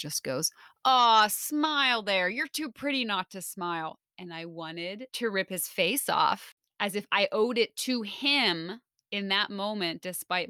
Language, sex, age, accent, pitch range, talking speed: English, female, 30-49, American, 170-235 Hz, 170 wpm